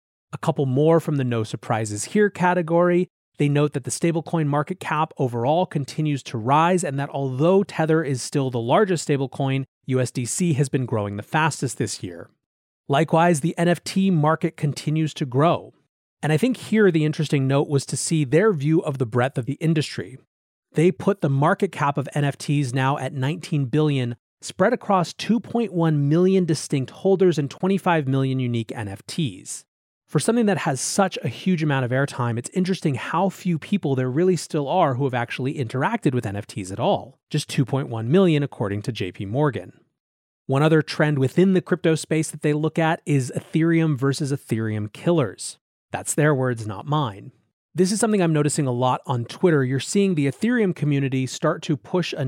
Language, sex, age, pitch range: English, male, 30-49, 130-165 Hz